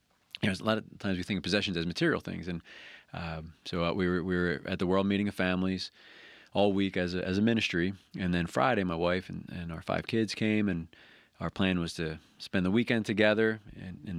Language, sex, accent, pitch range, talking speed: English, male, American, 90-100 Hz, 235 wpm